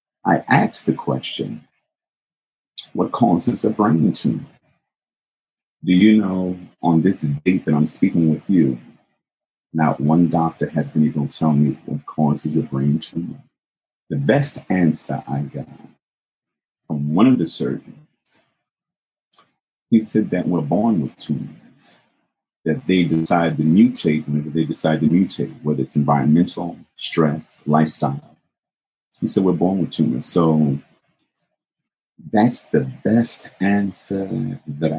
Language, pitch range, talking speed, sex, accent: English, 75-95 Hz, 135 wpm, male, American